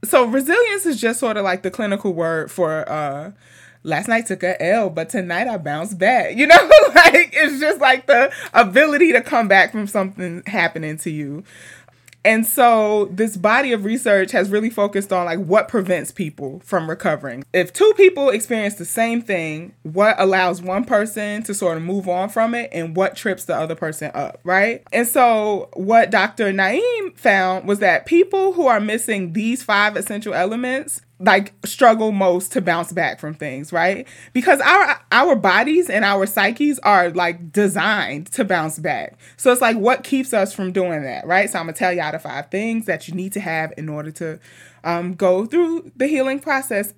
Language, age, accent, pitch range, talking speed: English, 20-39, American, 180-235 Hz, 195 wpm